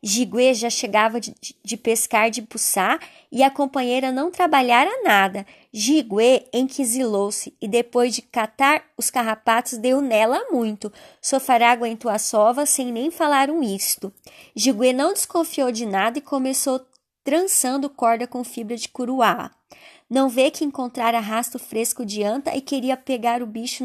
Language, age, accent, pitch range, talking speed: Portuguese, 20-39, Brazilian, 230-280 Hz, 150 wpm